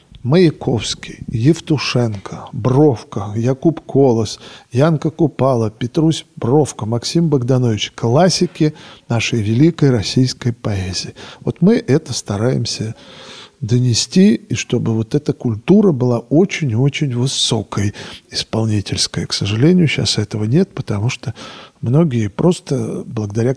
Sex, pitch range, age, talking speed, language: male, 115-150 Hz, 40-59, 100 wpm, Russian